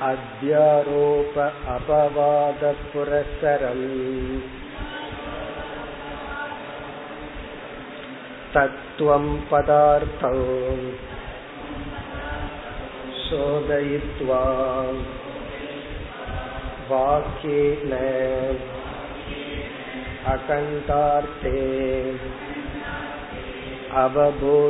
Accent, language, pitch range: native, Tamil, 130-145 Hz